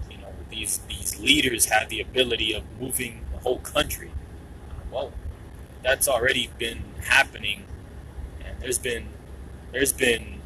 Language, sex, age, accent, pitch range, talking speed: English, male, 20-39, American, 65-80 Hz, 120 wpm